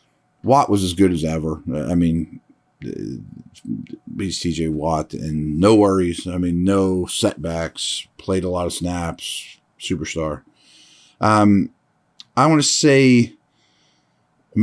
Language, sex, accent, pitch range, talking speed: English, male, American, 90-110 Hz, 125 wpm